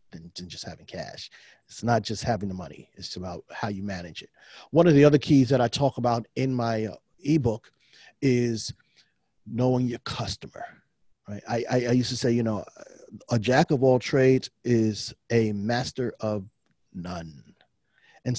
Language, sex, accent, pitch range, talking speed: English, male, American, 105-130 Hz, 165 wpm